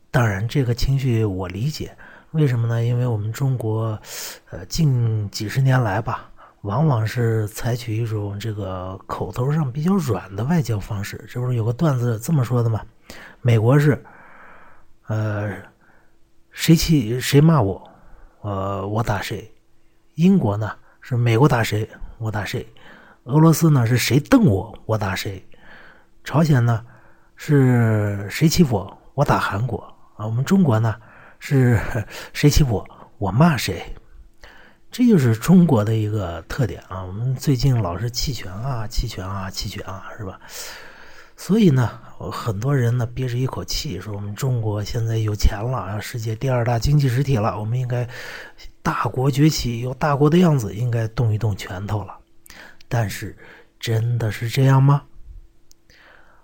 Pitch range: 105-135 Hz